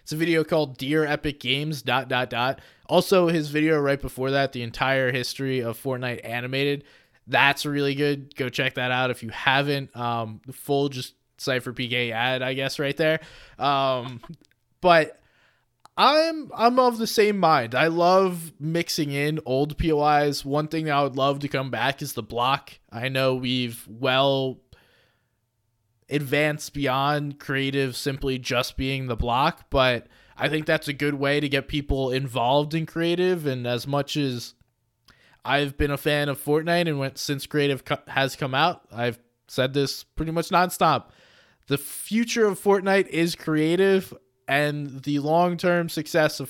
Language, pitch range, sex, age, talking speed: English, 130-155 Hz, male, 20-39, 165 wpm